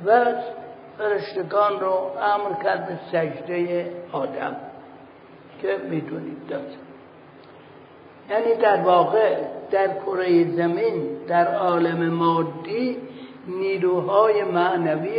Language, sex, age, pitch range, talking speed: Persian, male, 60-79, 175-225 Hz, 85 wpm